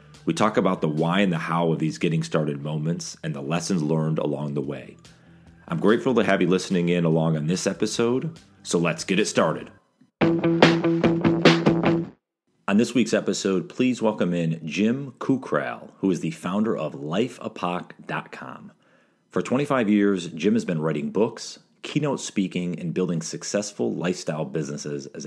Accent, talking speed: American, 160 wpm